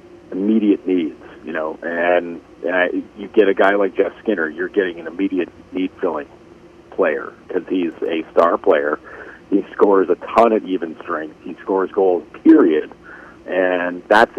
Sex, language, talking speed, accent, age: male, English, 160 wpm, American, 50-69